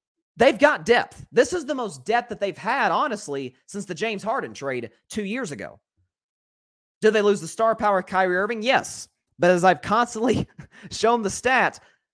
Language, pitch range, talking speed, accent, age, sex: English, 130-215 Hz, 185 wpm, American, 30-49, male